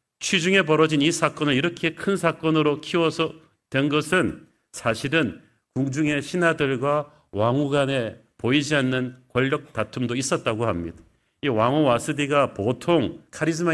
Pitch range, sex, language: 130-160 Hz, male, Korean